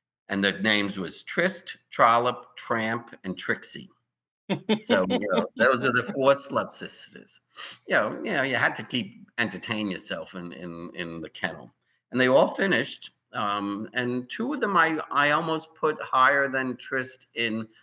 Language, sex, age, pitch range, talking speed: English, male, 60-79, 95-130 Hz, 170 wpm